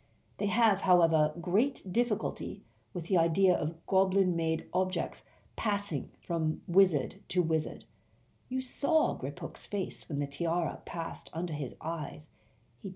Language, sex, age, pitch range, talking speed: English, female, 40-59, 150-195 Hz, 130 wpm